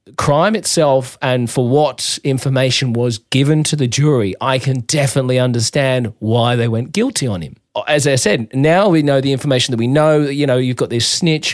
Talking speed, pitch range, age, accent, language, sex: 200 wpm, 115-140 Hz, 30-49, Australian, English, male